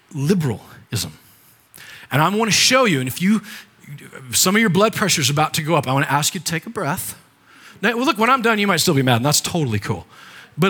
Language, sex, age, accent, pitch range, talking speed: English, male, 40-59, American, 125-175 Hz, 260 wpm